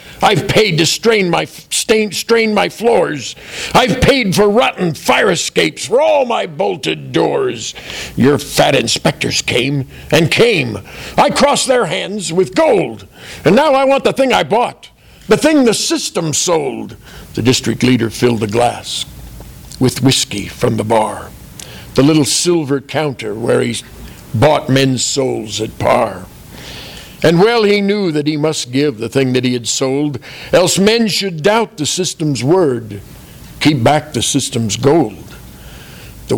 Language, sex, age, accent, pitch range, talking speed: English, male, 50-69, American, 115-185 Hz, 155 wpm